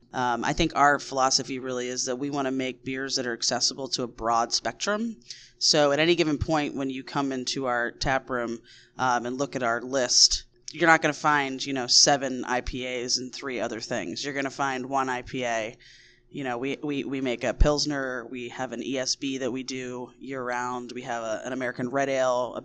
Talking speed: 215 wpm